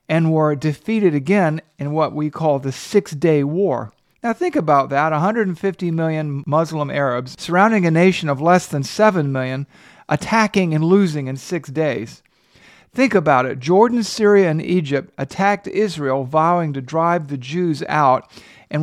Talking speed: 160 wpm